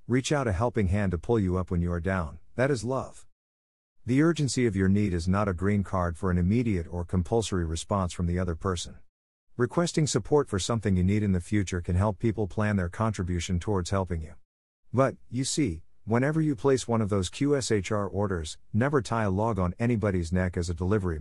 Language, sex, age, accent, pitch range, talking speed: English, male, 50-69, American, 90-120 Hz, 210 wpm